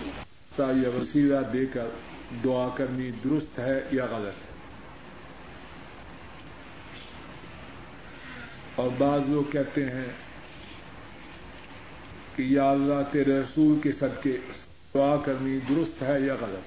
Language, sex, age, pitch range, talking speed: Urdu, male, 50-69, 135-150 Hz, 100 wpm